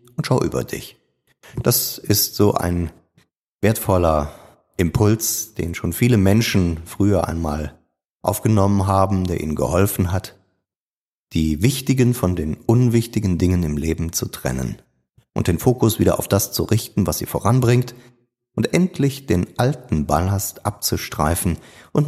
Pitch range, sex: 85-115 Hz, male